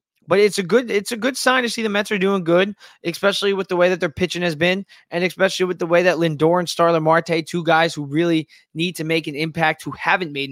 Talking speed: 260 wpm